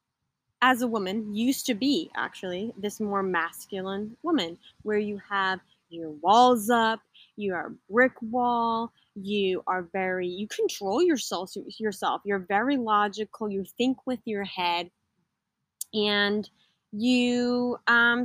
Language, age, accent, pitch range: English, 20-39, American, 195-250 Hz